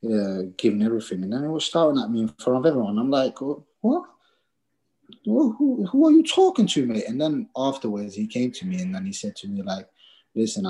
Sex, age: male, 20-39